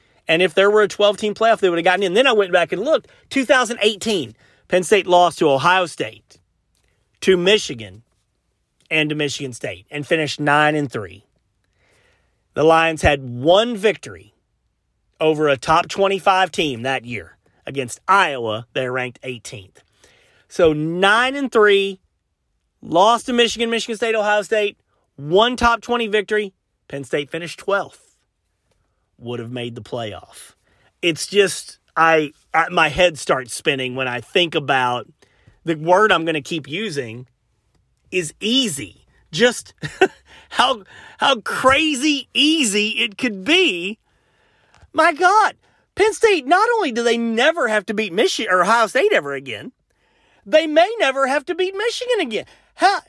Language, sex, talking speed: English, male, 145 wpm